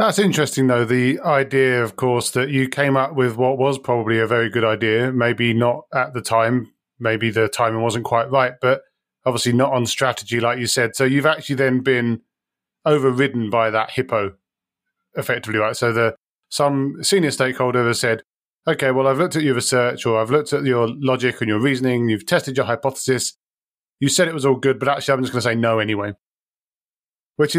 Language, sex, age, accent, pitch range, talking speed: English, male, 30-49, British, 115-135 Hz, 200 wpm